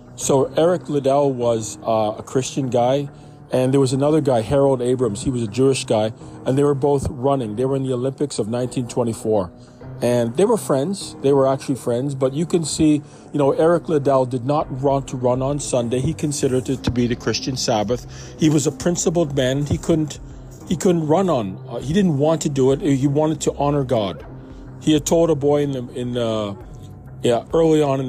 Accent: American